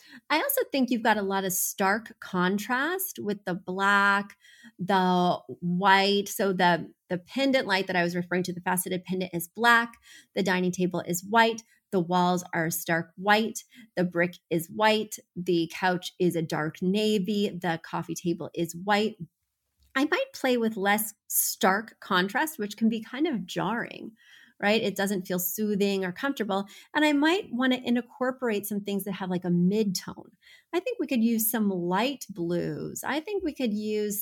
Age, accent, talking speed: 30-49, American, 175 wpm